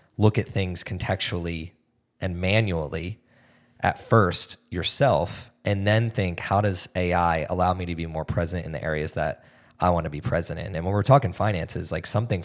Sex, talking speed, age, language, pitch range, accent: male, 185 wpm, 20-39, English, 90-120 Hz, American